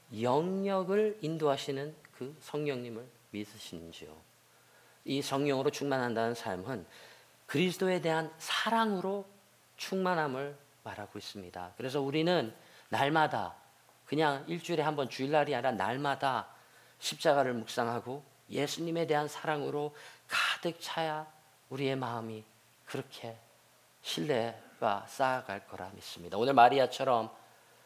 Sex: male